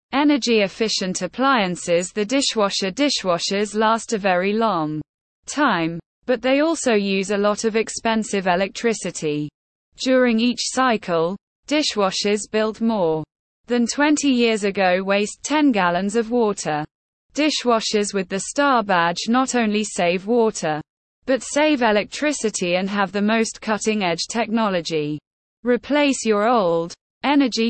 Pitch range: 185-245 Hz